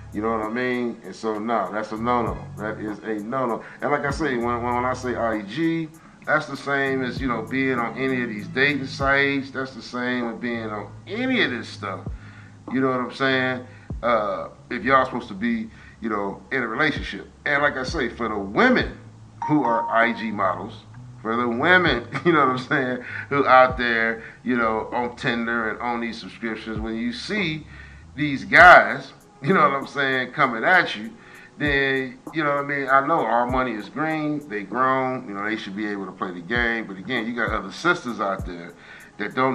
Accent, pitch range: American, 110-135 Hz